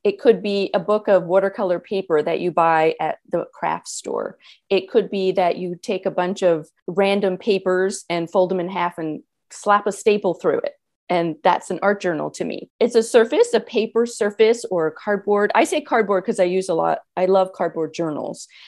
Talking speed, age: 210 wpm, 40-59